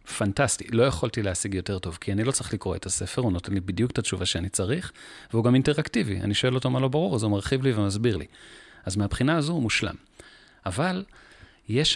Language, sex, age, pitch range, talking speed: Hebrew, male, 30-49, 95-130 Hz, 215 wpm